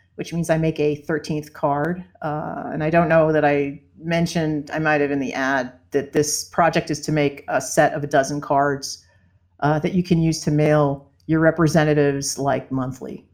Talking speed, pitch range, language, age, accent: 200 wpm, 150-180 Hz, English, 50-69, American